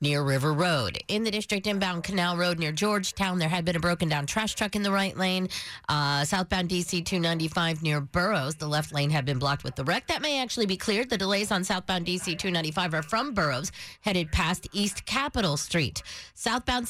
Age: 40-59